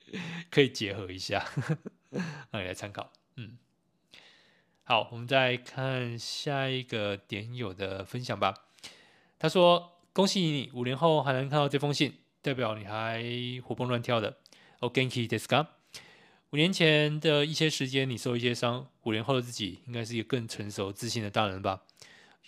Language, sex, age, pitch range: Chinese, male, 20-39, 105-130 Hz